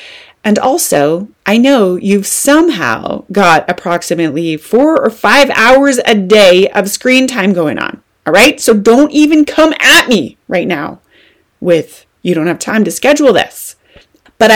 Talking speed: 155 wpm